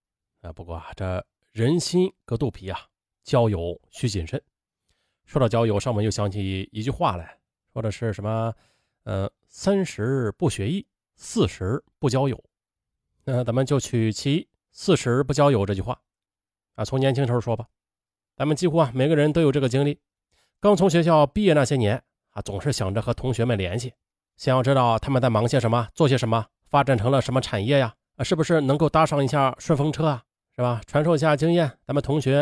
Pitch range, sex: 110-145 Hz, male